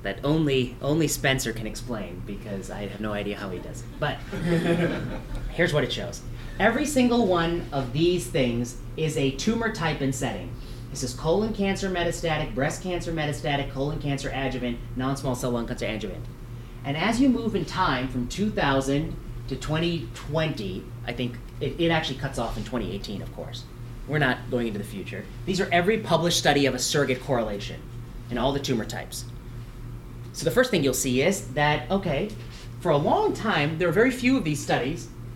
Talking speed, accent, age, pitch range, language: 185 wpm, American, 30-49, 120-155 Hz, English